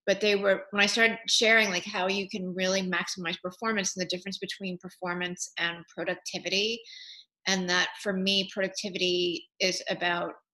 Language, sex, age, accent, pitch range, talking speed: English, female, 30-49, American, 180-205 Hz, 160 wpm